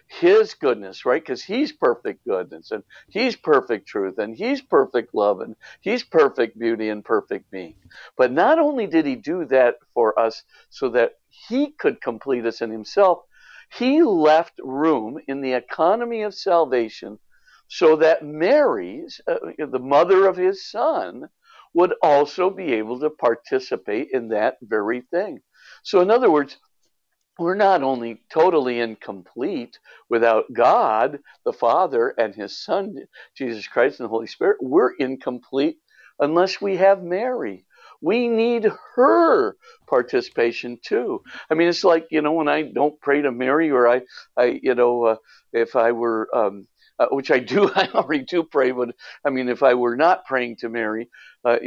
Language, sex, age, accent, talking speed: English, male, 50-69, American, 165 wpm